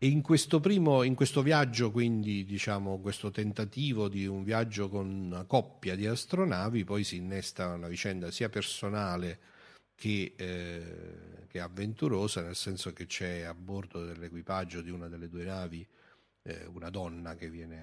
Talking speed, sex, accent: 155 wpm, male, native